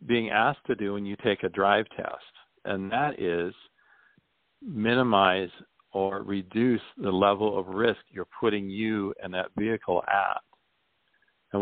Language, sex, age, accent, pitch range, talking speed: English, male, 50-69, American, 100-120 Hz, 145 wpm